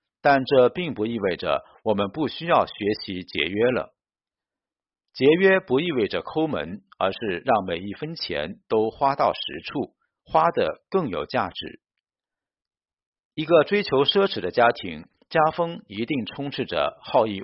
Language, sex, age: Chinese, male, 50-69